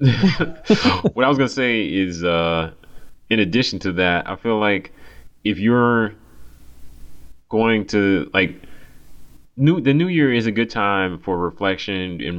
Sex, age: male, 30-49